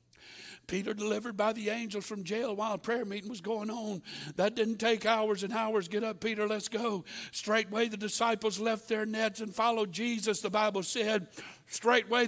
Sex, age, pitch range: male, 60-79, 210-295 Hz